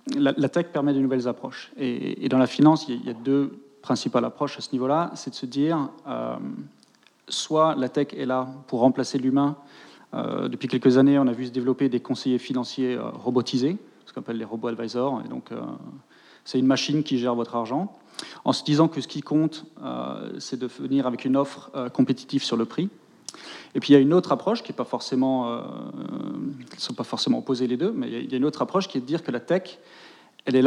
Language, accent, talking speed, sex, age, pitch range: French, French, 215 wpm, male, 30-49, 125-150 Hz